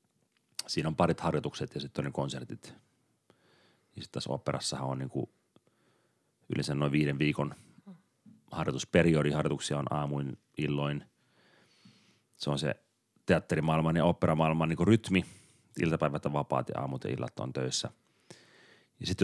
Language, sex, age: Finnish, male, 30-49